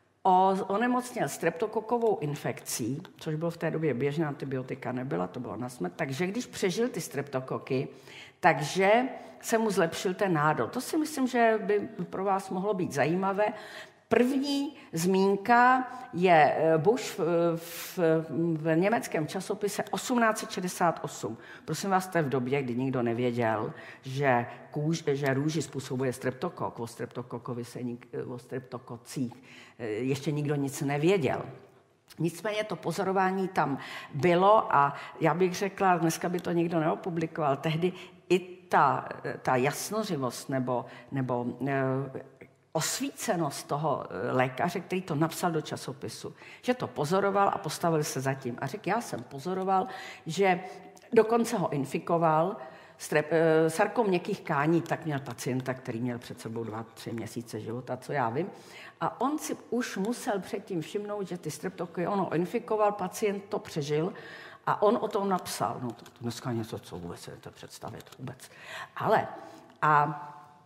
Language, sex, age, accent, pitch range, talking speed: Czech, female, 50-69, native, 135-195 Hz, 140 wpm